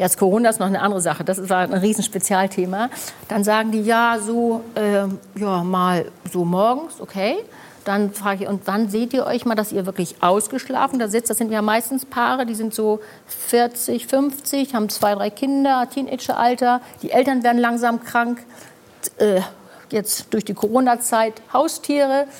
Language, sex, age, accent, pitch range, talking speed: German, female, 50-69, German, 210-260 Hz, 170 wpm